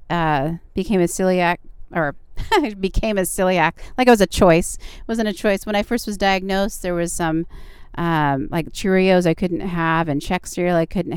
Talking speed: 195 wpm